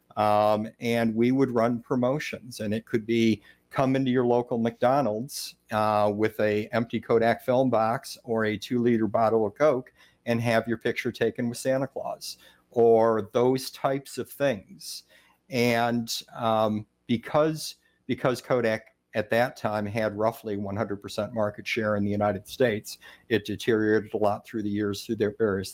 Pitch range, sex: 105-120 Hz, male